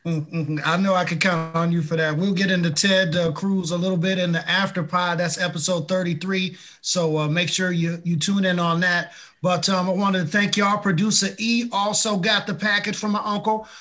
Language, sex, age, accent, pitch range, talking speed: English, male, 30-49, American, 175-205 Hz, 225 wpm